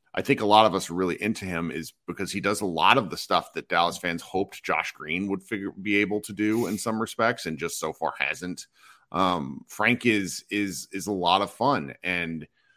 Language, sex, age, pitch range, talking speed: English, male, 40-59, 90-115 Hz, 230 wpm